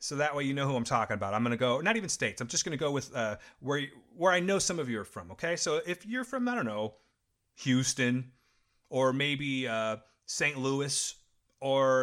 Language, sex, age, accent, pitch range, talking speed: English, male, 30-49, American, 120-180 Hz, 240 wpm